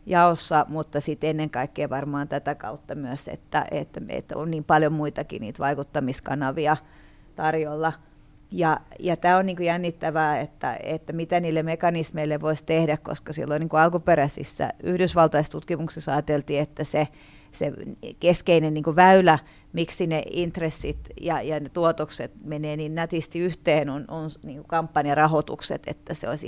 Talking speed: 140 wpm